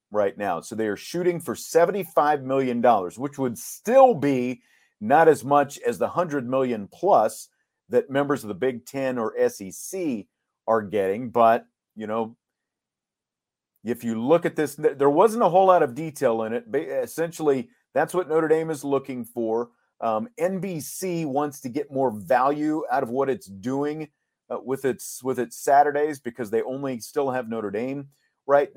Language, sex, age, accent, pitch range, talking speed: English, male, 40-59, American, 120-150 Hz, 175 wpm